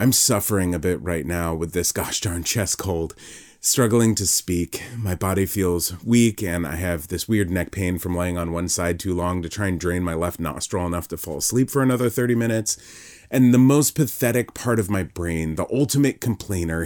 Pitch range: 90-120 Hz